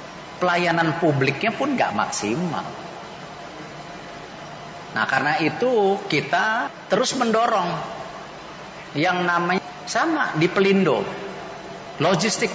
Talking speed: 80 wpm